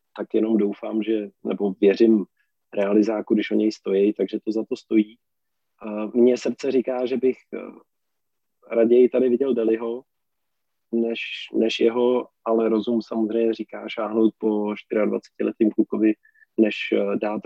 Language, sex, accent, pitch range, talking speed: Czech, male, native, 105-120 Hz, 135 wpm